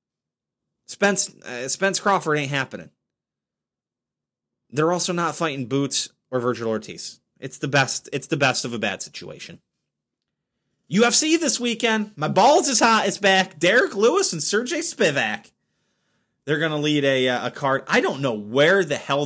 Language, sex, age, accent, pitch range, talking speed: English, male, 20-39, American, 120-180 Hz, 155 wpm